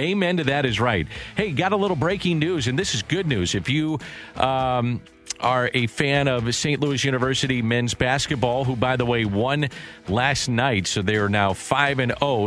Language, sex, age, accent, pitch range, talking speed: English, male, 50-69, American, 115-145 Hz, 200 wpm